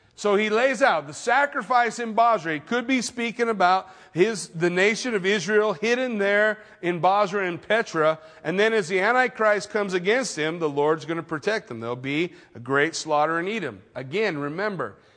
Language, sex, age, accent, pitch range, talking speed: English, male, 40-59, American, 165-215 Hz, 180 wpm